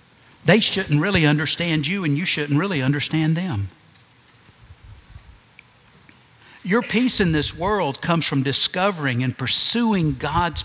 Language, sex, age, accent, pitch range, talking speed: English, male, 60-79, American, 120-165 Hz, 125 wpm